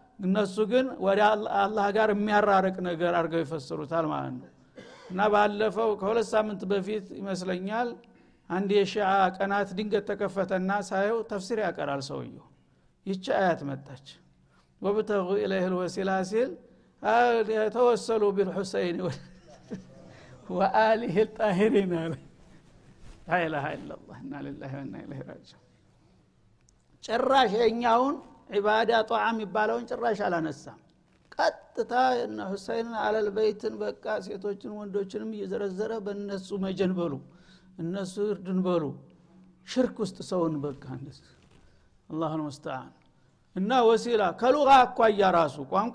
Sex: male